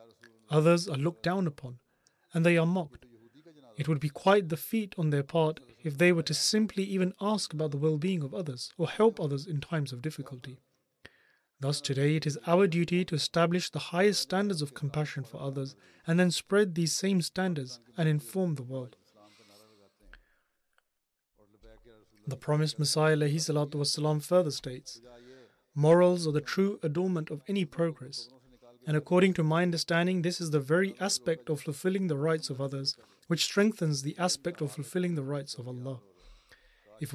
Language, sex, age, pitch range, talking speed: English, male, 30-49, 140-175 Hz, 165 wpm